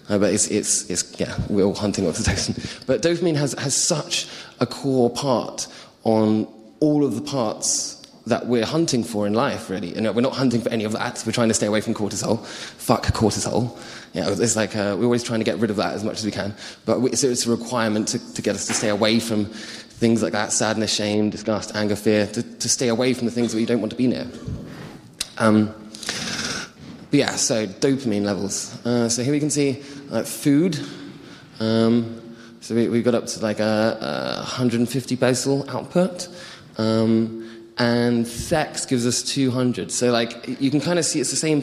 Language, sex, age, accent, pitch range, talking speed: German, male, 20-39, British, 110-125 Hz, 210 wpm